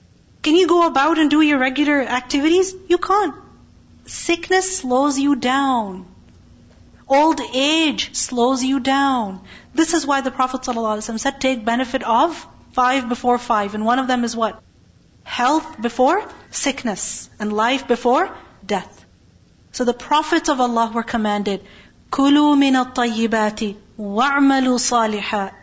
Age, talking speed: 40-59, 130 wpm